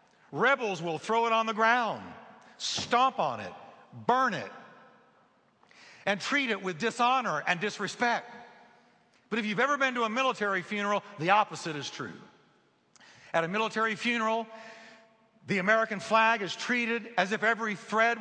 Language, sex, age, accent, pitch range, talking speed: English, male, 60-79, American, 170-225 Hz, 150 wpm